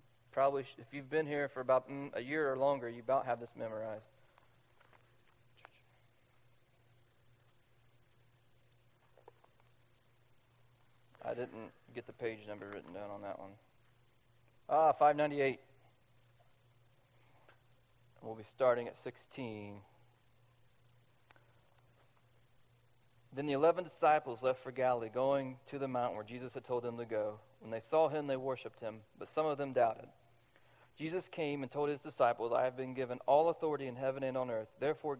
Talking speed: 140 wpm